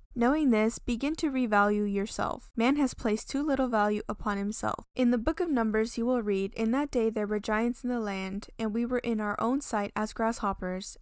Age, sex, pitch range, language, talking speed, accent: 10-29, female, 200-240 Hz, English, 220 wpm, American